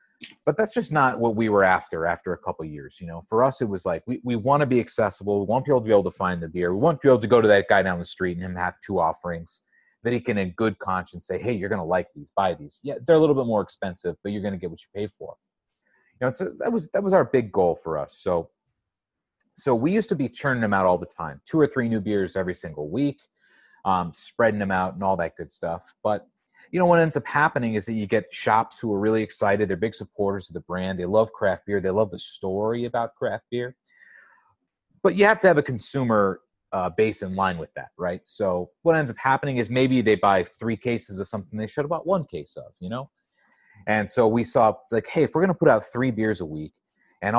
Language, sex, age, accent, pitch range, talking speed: English, male, 30-49, American, 95-125 Hz, 270 wpm